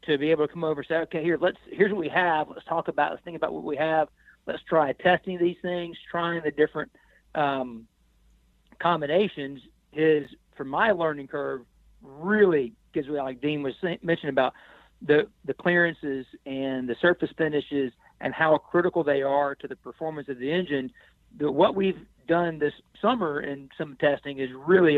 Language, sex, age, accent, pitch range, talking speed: English, male, 40-59, American, 135-165 Hz, 185 wpm